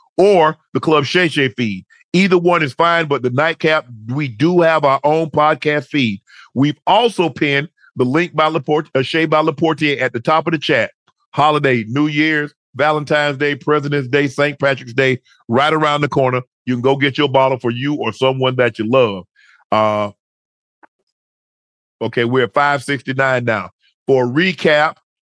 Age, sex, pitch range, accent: 40-59, male, 115-145 Hz, American